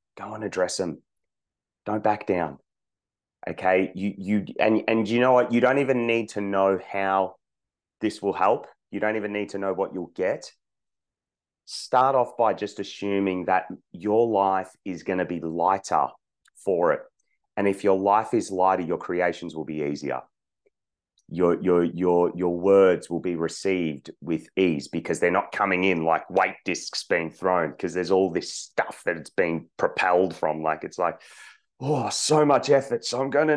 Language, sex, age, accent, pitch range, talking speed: English, male, 30-49, Australian, 85-110 Hz, 180 wpm